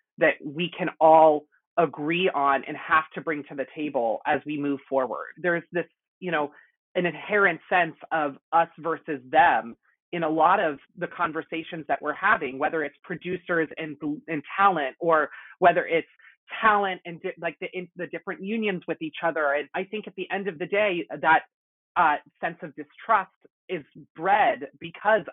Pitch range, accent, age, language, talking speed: 155-185 Hz, American, 30-49, English, 180 wpm